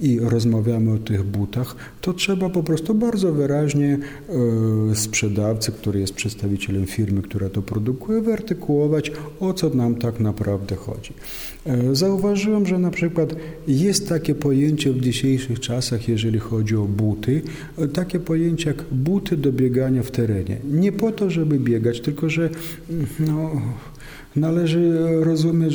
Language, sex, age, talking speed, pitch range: Polish, male, 40-59, 135 wpm, 110-150 Hz